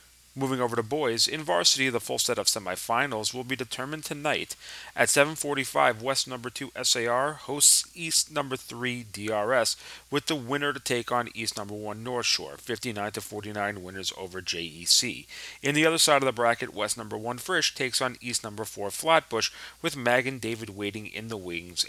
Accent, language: American, English